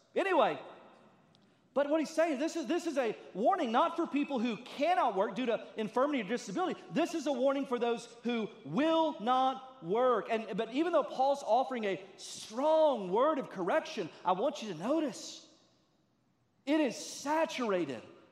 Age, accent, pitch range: 40-59, American, 205-290 Hz